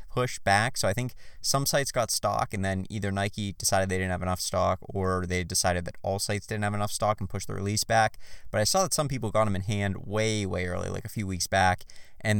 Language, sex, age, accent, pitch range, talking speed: English, male, 20-39, American, 95-110 Hz, 255 wpm